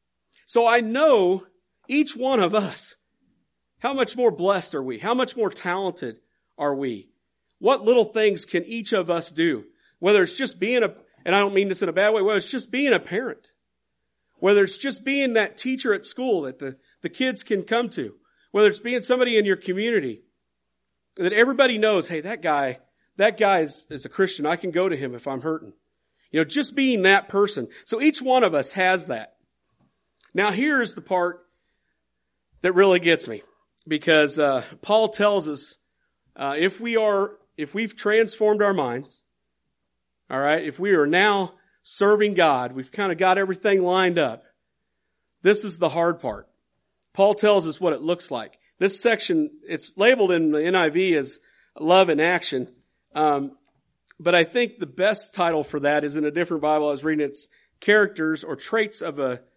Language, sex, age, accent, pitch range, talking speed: English, male, 40-59, American, 155-220 Hz, 185 wpm